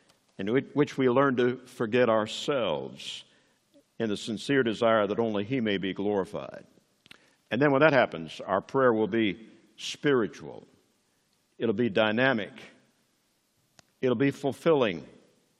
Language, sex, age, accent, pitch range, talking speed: English, male, 60-79, American, 115-160 Hz, 135 wpm